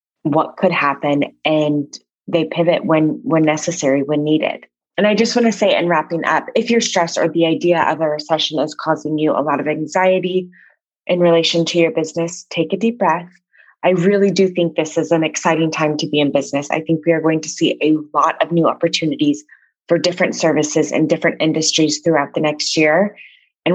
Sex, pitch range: female, 155-185 Hz